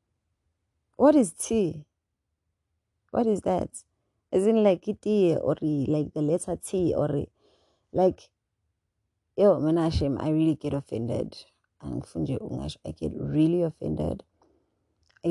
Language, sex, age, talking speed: English, female, 20-39, 100 wpm